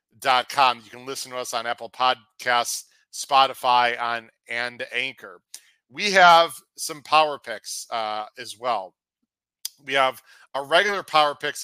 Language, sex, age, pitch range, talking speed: English, male, 40-59, 120-155 Hz, 140 wpm